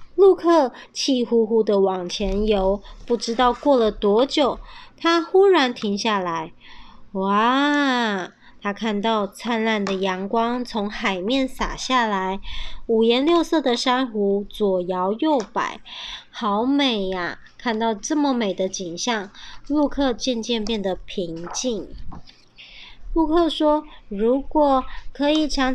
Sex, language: male, Chinese